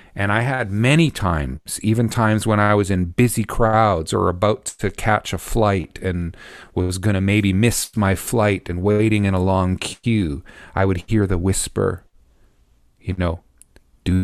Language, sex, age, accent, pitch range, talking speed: English, male, 40-59, American, 85-105 Hz, 175 wpm